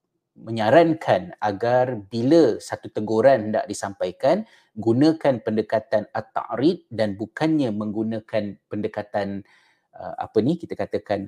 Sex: male